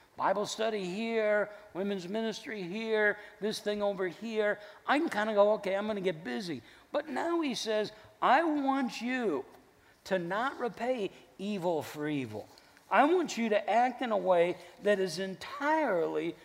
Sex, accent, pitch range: male, American, 185-265 Hz